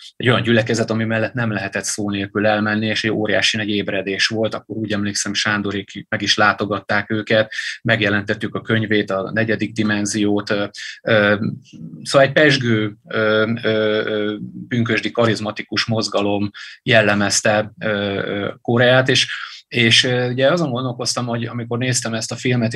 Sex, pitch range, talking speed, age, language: male, 105-115 Hz, 125 wpm, 30-49, Hungarian